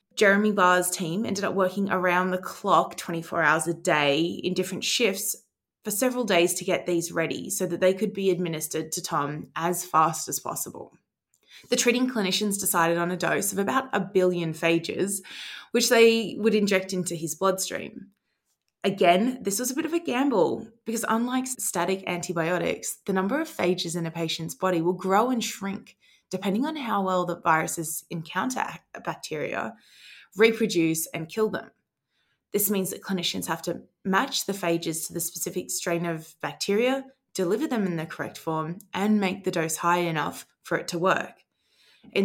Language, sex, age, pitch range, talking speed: English, female, 20-39, 170-215 Hz, 175 wpm